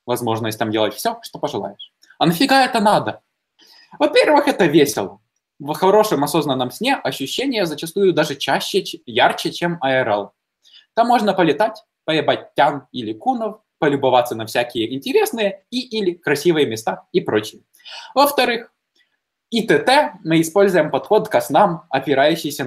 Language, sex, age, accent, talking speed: Ukrainian, male, 20-39, native, 130 wpm